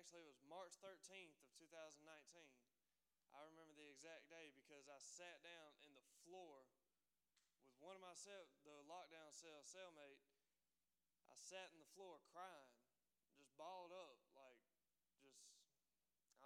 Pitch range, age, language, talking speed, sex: 135-165 Hz, 20-39, English, 140 wpm, male